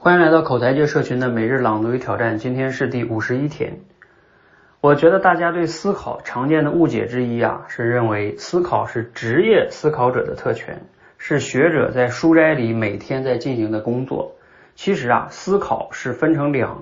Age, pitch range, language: 30-49, 120-170 Hz, Chinese